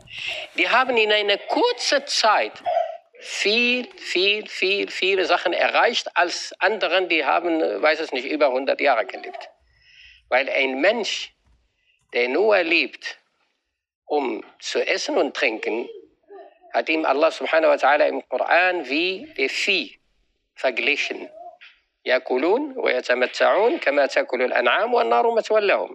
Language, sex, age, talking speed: German, male, 50-69, 105 wpm